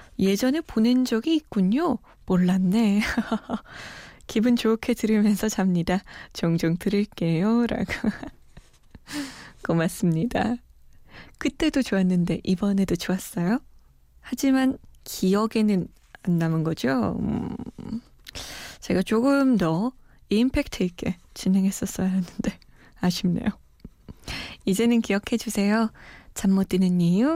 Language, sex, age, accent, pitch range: Korean, female, 20-39, native, 185-245 Hz